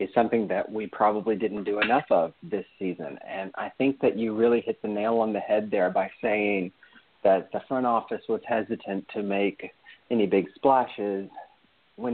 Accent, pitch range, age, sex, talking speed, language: American, 110-145 Hz, 40-59, male, 190 wpm, English